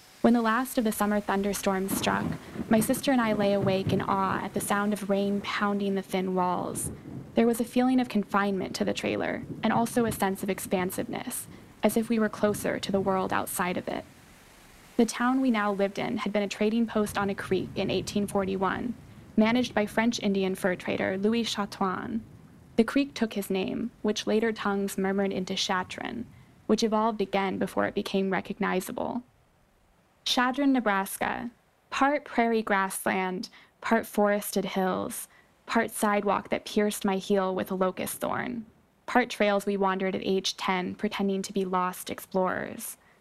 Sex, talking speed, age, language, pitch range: female, 170 wpm, 20-39, English, 190-225 Hz